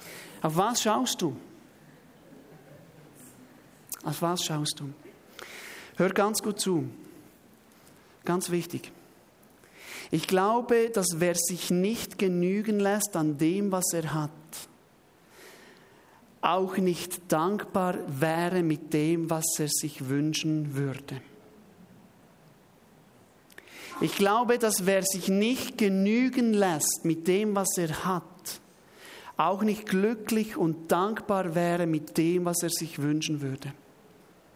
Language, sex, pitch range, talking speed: German, male, 175-225 Hz, 110 wpm